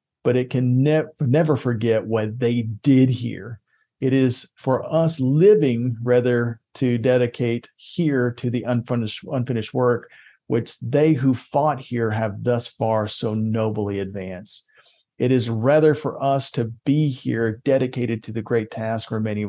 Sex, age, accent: male, 40-59, American